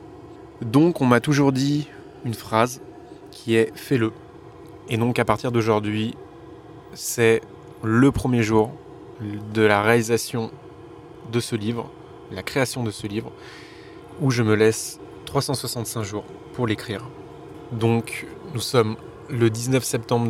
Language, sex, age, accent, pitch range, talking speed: French, male, 20-39, French, 110-125 Hz, 130 wpm